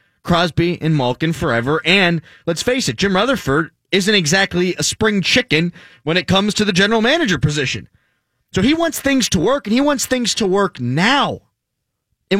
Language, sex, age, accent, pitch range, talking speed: English, male, 20-39, American, 125-205 Hz, 180 wpm